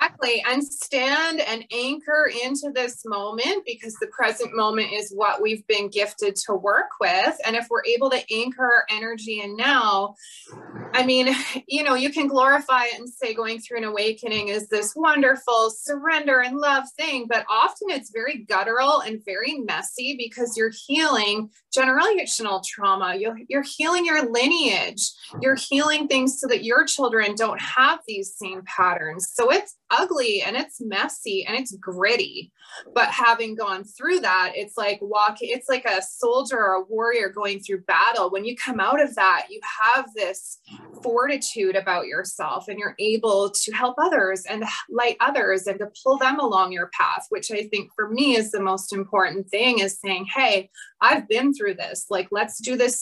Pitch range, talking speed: 205-270 Hz, 180 wpm